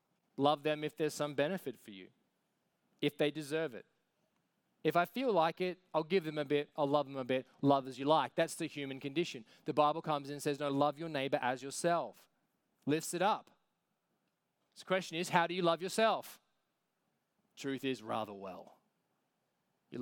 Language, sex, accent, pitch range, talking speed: English, male, Australian, 130-180 Hz, 190 wpm